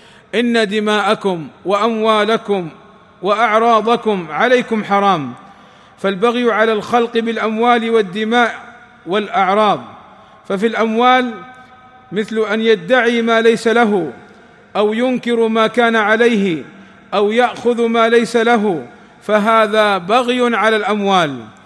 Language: Arabic